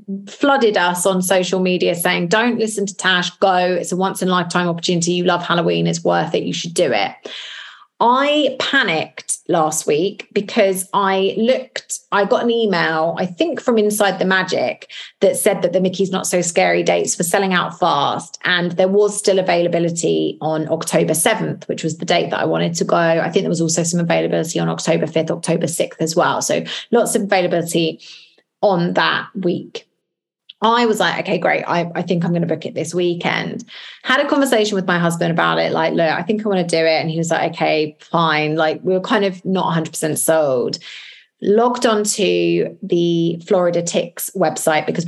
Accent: British